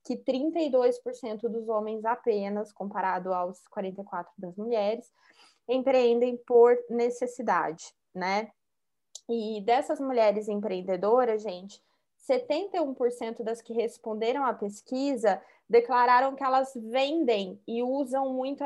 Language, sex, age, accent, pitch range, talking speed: Portuguese, female, 20-39, Brazilian, 215-255 Hz, 105 wpm